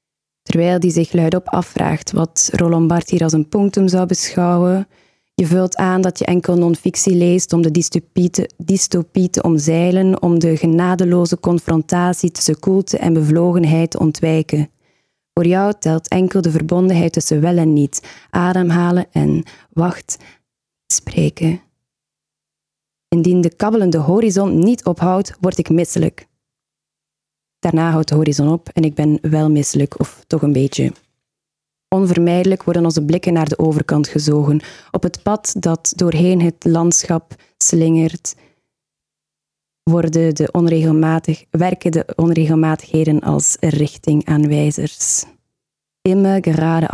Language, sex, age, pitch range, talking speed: Dutch, female, 20-39, 160-180 Hz, 130 wpm